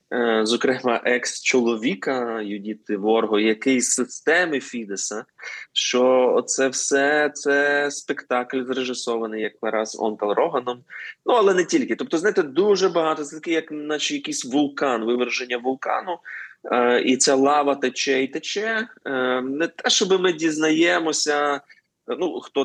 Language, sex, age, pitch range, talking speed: Ukrainian, male, 20-39, 105-145 Hz, 120 wpm